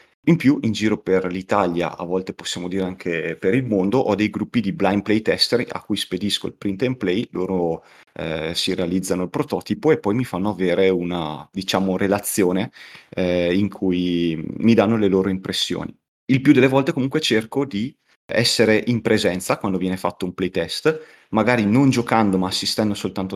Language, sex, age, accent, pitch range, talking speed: Italian, male, 30-49, native, 95-125 Hz, 180 wpm